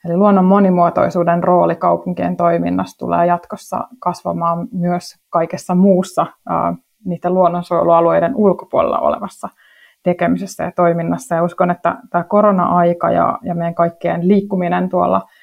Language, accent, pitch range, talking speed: Finnish, native, 175-195 Hz, 120 wpm